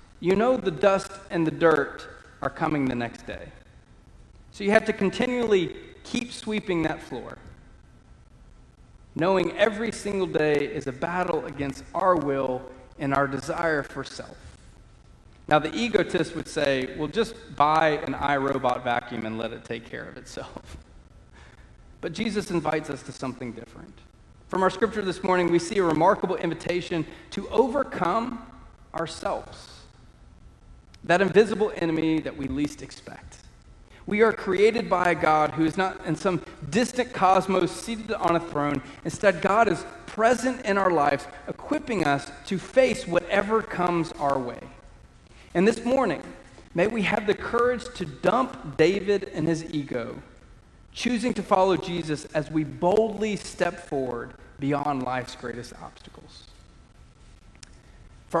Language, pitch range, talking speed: English, 140-195 Hz, 145 wpm